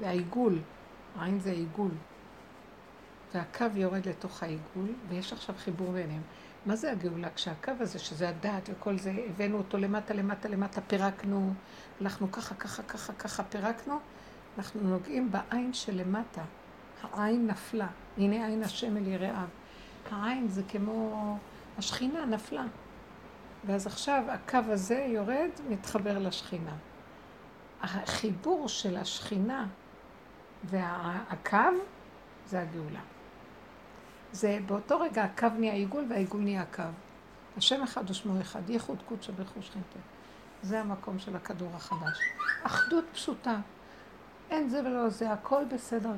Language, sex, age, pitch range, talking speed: Hebrew, female, 60-79, 195-235 Hz, 115 wpm